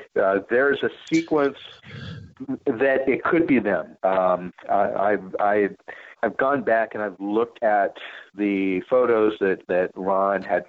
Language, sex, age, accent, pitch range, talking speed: English, male, 40-59, American, 95-120 Hz, 140 wpm